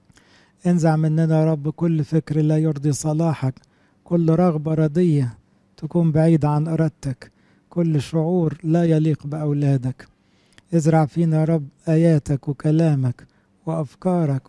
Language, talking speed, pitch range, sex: English, 110 wpm, 150-165 Hz, male